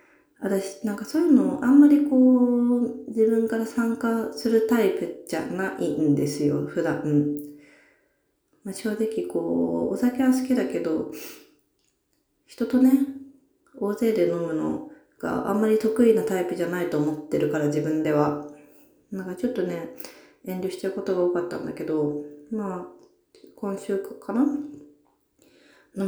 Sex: female